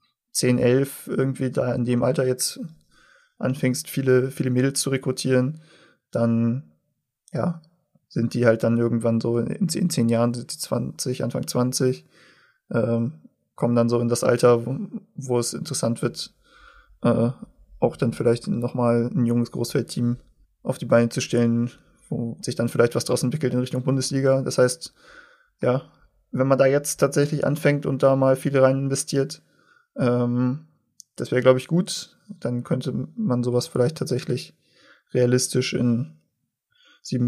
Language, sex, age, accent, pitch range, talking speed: German, male, 20-39, German, 120-140 Hz, 155 wpm